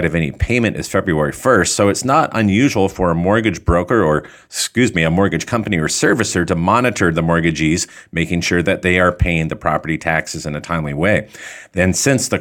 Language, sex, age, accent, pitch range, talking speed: English, male, 40-59, American, 85-110 Hz, 205 wpm